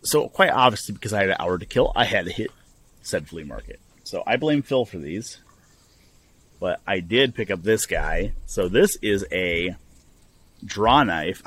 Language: English